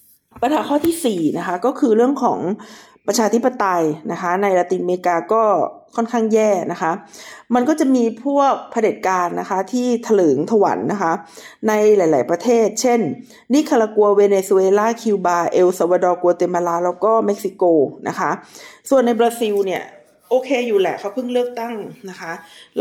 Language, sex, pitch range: Thai, female, 185-235 Hz